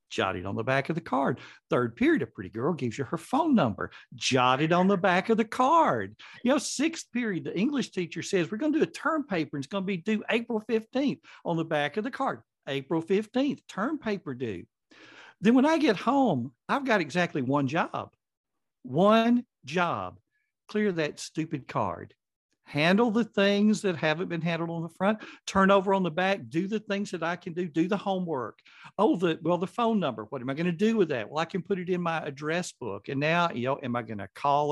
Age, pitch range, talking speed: 60-79, 145-210 Hz, 225 wpm